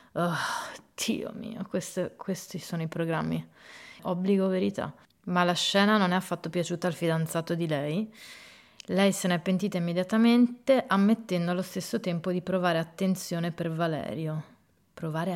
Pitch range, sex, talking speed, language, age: 170-200 Hz, female, 140 wpm, Italian, 30-49